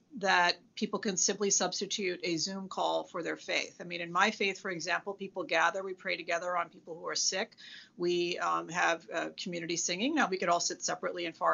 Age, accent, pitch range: 40-59, American, 175-235 Hz